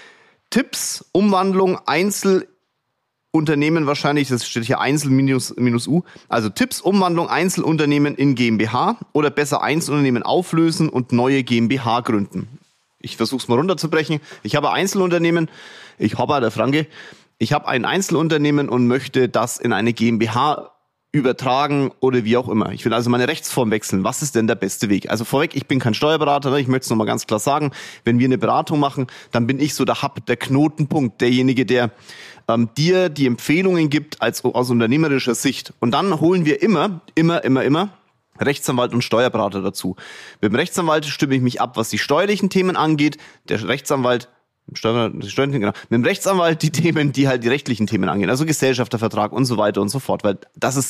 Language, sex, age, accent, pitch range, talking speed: German, male, 30-49, German, 120-155 Hz, 170 wpm